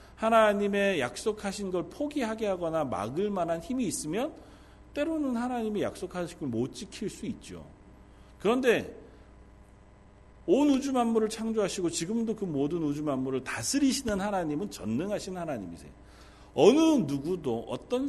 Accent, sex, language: native, male, Korean